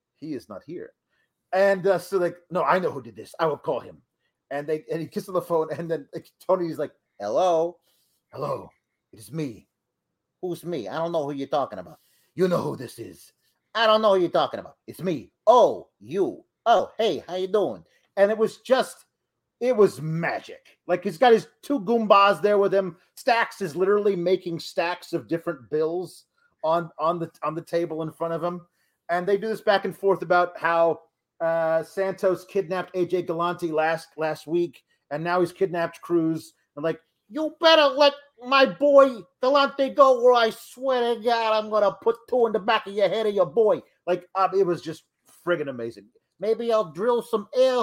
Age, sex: 30-49, male